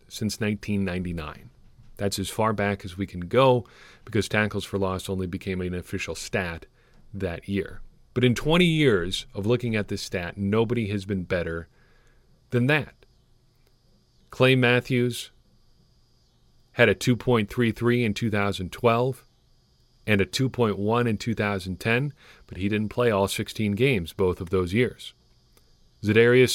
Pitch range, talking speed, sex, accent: 95-120 Hz, 135 wpm, male, American